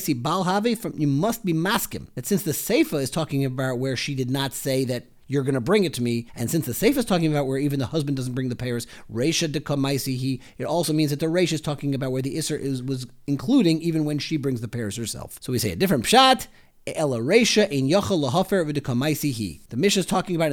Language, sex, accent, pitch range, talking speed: English, male, American, 125-170 Hz, 215 wpm